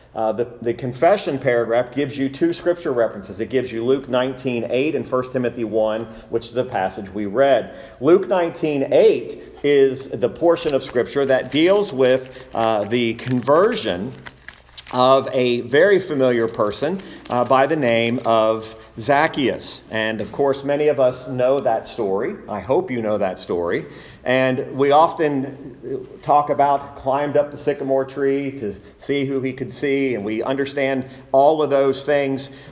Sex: male